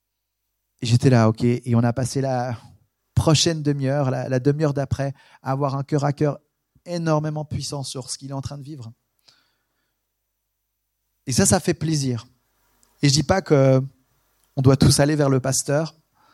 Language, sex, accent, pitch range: French, male, French, 120-145 Hz